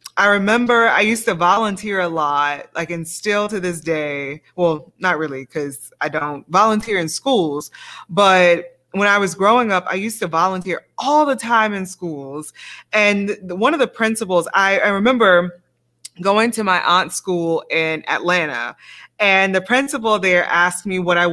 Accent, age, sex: American, 20-39, female